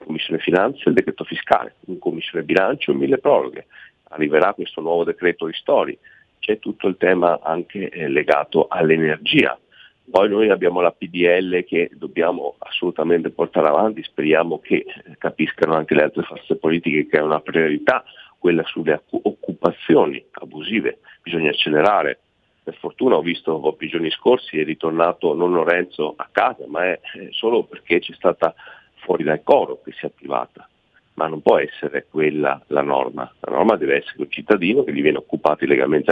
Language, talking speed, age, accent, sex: Italian, 165 wpm, 40-59, native, male